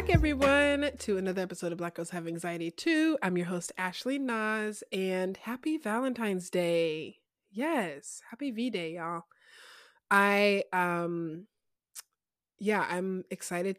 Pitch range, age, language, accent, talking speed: 175-230 Hz, 20-39, English, American, 125 wpm